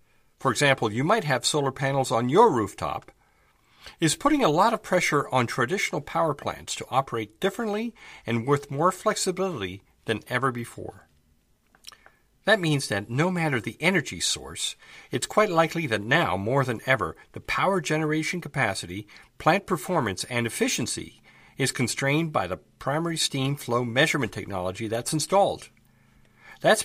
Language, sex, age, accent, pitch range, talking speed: English, male, 50-69, American, 110-155 Hz, 145 wpm